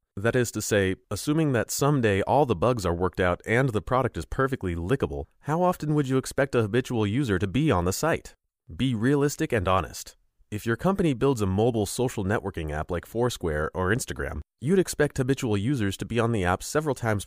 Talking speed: 210 wpm